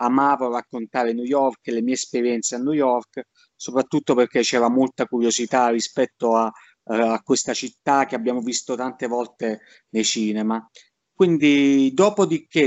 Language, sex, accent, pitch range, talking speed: Italian, male, native, 125-150 Hz, 140 wpm